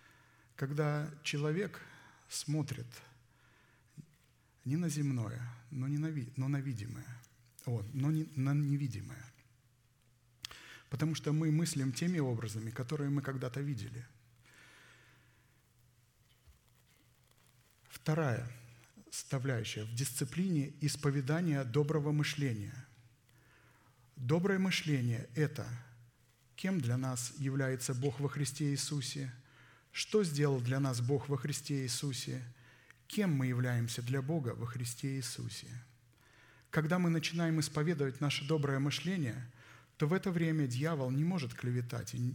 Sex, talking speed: male, 105 wpm